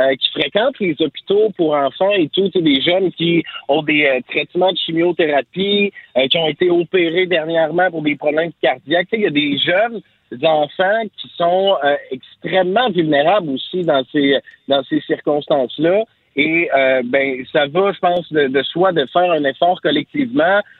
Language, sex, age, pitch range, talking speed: French, male, 50-69, 145-195 Hz, 175 wpm